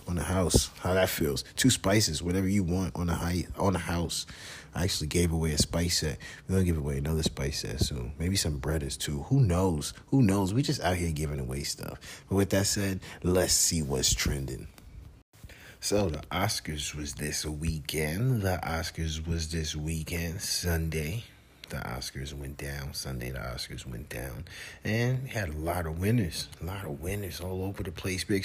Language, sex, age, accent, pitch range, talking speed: English, male, 30-49, American, 75-95 Hz, 195 wpm